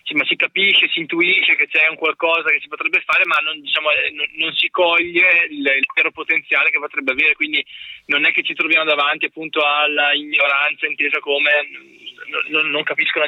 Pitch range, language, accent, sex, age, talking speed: 145-190 Hz, Italian, native, male, 20-39, 200 wpm